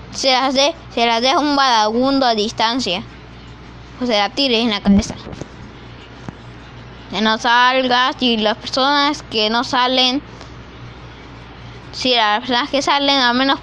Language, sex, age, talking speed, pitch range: Spanish, female, 10-29, 145 wpm, 215-275 Hz